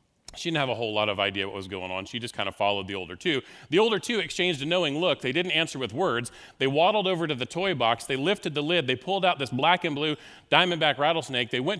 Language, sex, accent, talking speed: English, male, American, 275 wpm